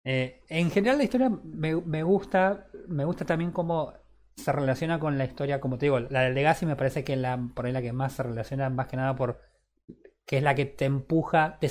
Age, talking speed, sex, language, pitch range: 20-39, 225 wpm, male, Spanish, 130-165 Hz